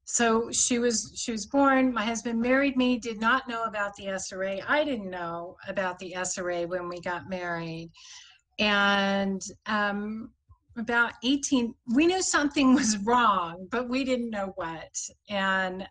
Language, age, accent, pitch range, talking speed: English, 40-59, American, 190-235 Hz, 155 wpm